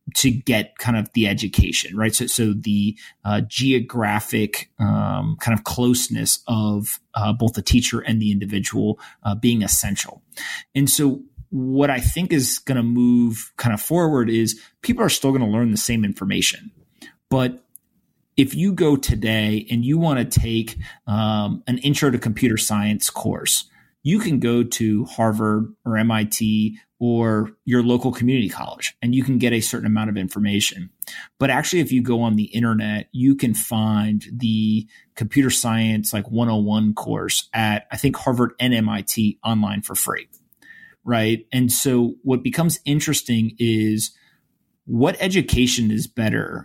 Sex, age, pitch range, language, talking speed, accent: male, 30-49, 110-130 Hz, English, 160 wpm, American